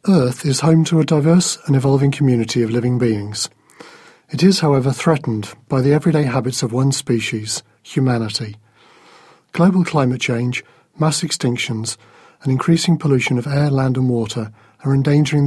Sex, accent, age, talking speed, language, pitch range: male, British, 40-59, 150 wpm, English, 120-145 Hz